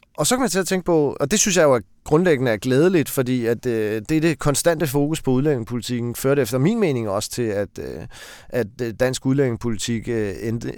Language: Danish